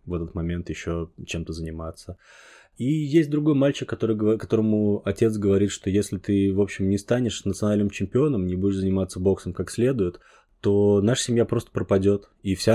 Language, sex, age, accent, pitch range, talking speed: Russian, male, 20-39, native, 90-110 Hz, 165 wpm